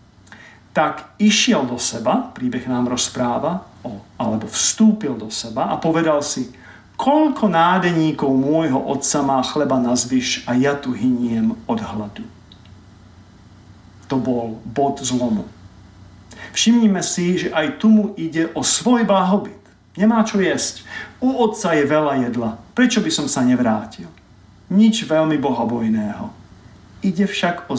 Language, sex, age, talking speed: Slovak, male, 50-69, 135 wpm